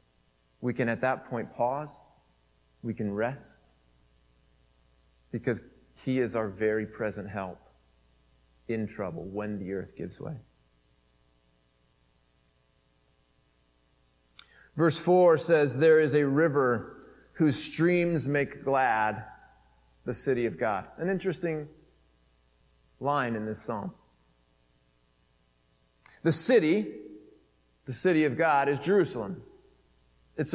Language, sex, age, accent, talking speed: English, male, 40-59, American, 105 wpm